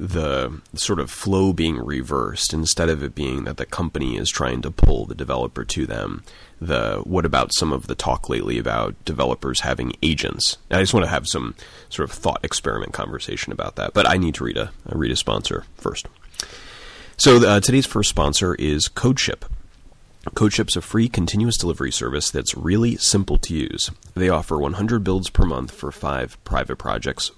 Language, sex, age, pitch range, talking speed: English, male, 30-49, 75-100 Hz, 185 wpm